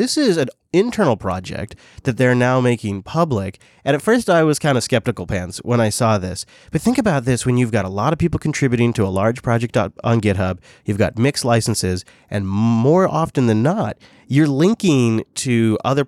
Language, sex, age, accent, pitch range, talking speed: English, male, 30-49, American, 105-140 Hz, 200 wpm